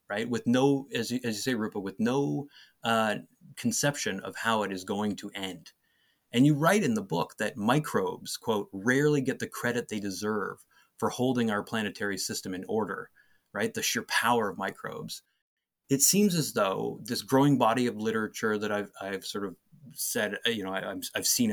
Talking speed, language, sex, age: 185 wpm, English, male, 30-49